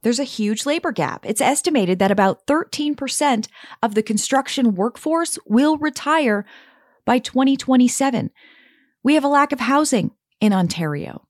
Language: English